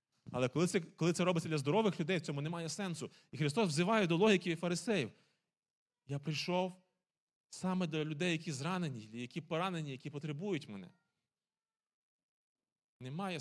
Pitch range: 155-195 Hz